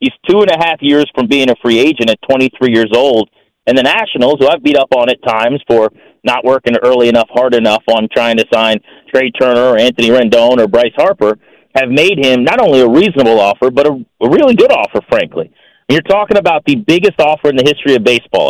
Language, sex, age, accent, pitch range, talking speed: English, male, 30-49, American, 120-165 Hz, 225 wpm